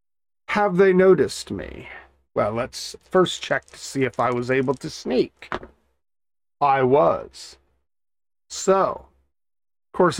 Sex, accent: male, American